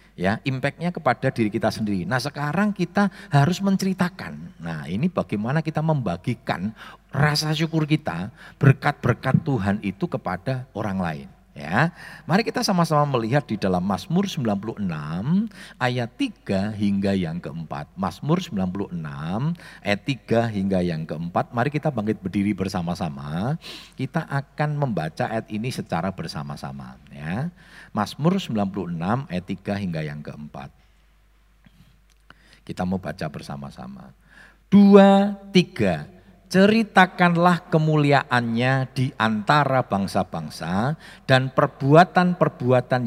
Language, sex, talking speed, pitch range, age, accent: Indonesian, male, 110 wpm, 100-165 Hz, 50-69, native